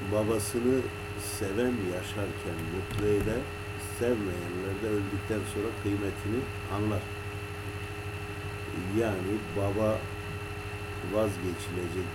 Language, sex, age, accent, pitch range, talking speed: Turkish, male, 50-69, native, 100-105 Hz, 65 wpm